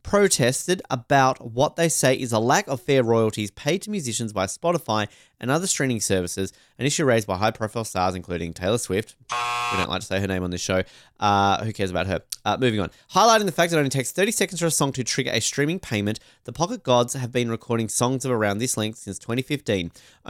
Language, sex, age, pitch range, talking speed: English, male, 20-39, 105-145 Hz, 230 wpm